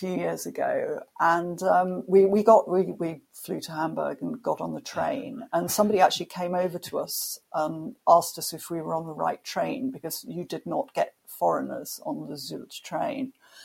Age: 50-69